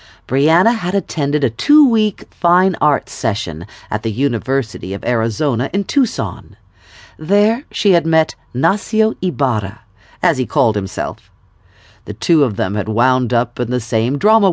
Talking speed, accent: 150 wpm, American